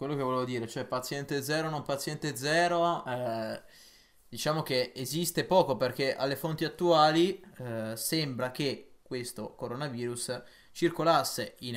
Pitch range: 120-160 Hz